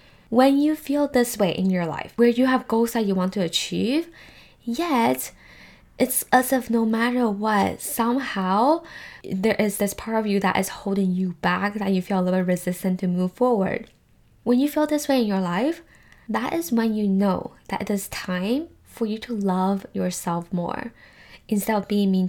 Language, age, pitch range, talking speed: English, 10-29, 185-235 Hz, 195 wpm